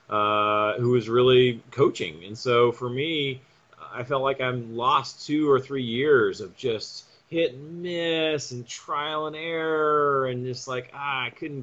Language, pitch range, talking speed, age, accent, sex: English, 115-155 Hz, 170 wpm, 30-49, American, male